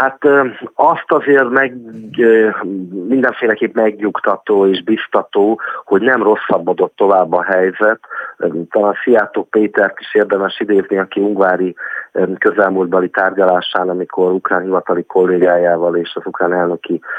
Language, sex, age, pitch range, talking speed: Hungarian, male, 30-49, 90-105 Hz, 115 wpm